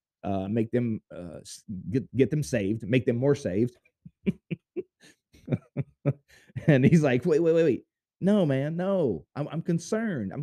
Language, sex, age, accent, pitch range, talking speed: English, male, 30-49, American, 95-155 Hz, 150 wpm